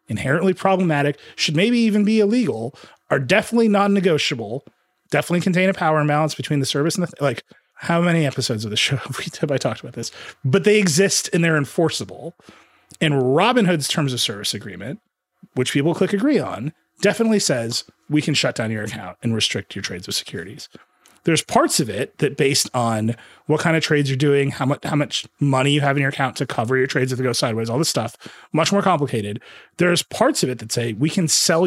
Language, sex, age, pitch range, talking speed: English, male, 30-49, 130-180 Hz, 215 wpm